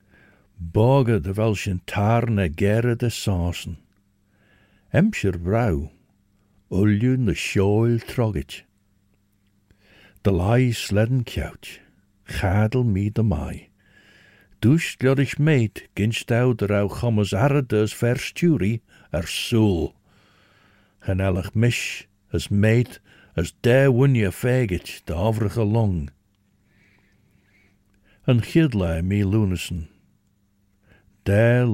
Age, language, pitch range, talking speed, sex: 60-79, English, 100-115 Hz, 100 wpm, male